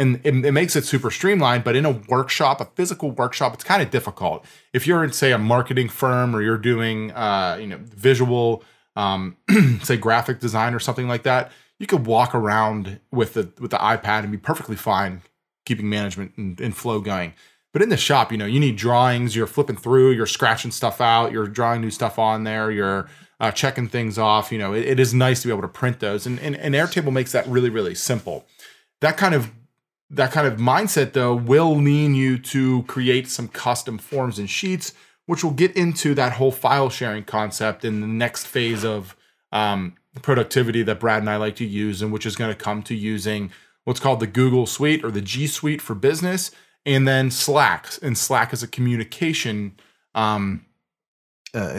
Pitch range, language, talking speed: 110-135 Hz, English, 205 wpm